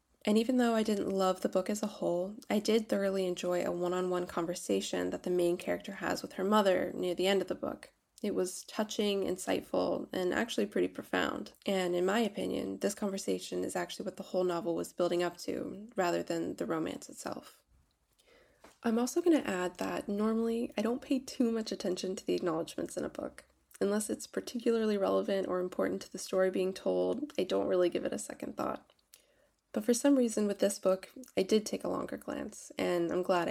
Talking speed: 205 wpm